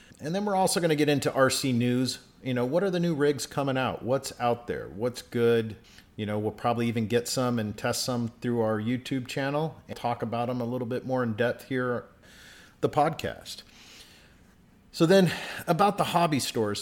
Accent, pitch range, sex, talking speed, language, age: American, 110-140 Hz, male, 205 wpm, English, 50-69